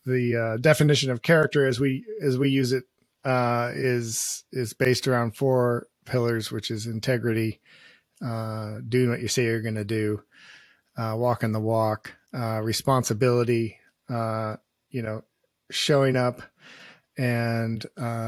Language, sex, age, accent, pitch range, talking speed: English, male, 40-59, American, 115-125 Hz, 140 wpm